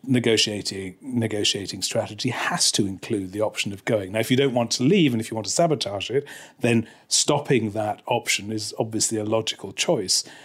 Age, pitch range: 40-59, 110-135 Hz